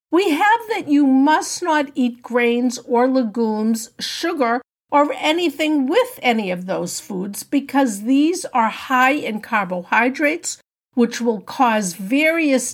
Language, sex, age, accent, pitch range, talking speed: English, female, 50-69, American, 220-300 Hz, 130 wpm